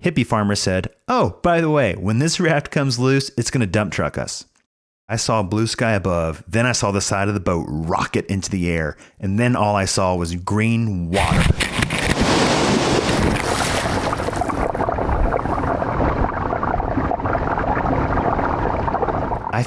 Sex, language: male, English